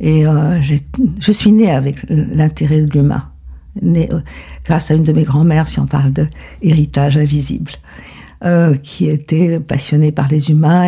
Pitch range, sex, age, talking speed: 150-175 Hz, female, 50-69, 160 wpm